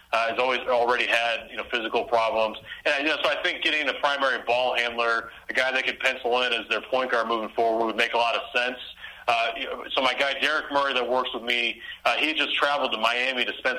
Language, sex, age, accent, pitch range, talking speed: English, male, 30-49, American, 115-130 Hz, 245 wpm